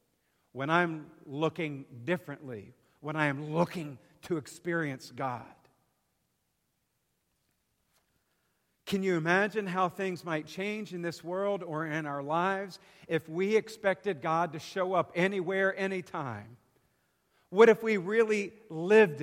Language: English